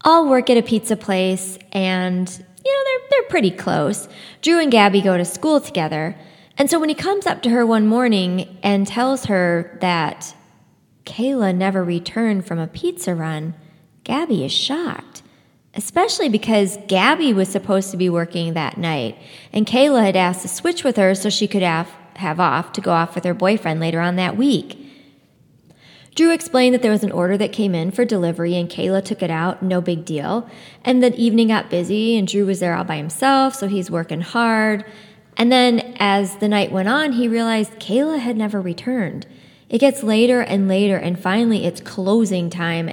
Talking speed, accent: 190 wpm, American